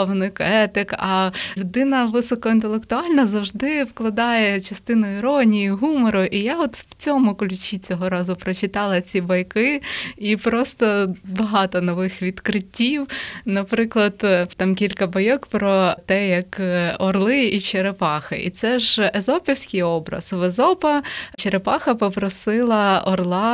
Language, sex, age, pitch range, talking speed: Ukrainian, female, 20-39, 185-225 Hz, 115 wpm